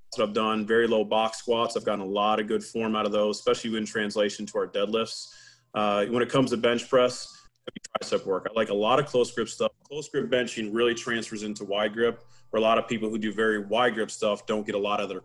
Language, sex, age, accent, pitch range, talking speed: English, male, 30-49, American, 105-120 Hz, 250 wpm